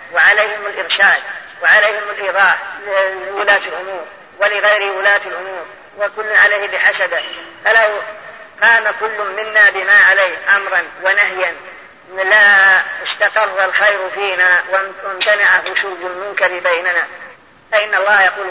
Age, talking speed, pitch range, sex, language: 30-49, 100 wpm, 185-210 Hz, female, Arabic